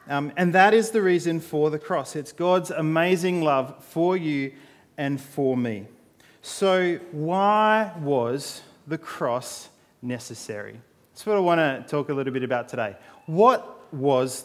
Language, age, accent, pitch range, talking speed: English, 30-49, Australian, 135-175 Hz, 155 wpm